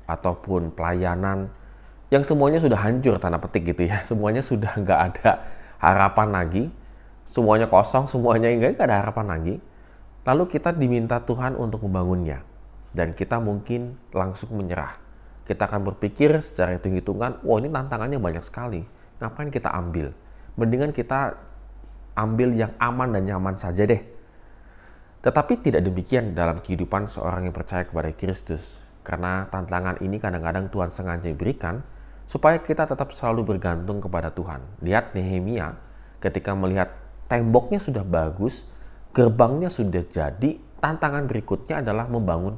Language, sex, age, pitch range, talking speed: Indonesian, male, 20-39, 90-120 Hz, 130 wpm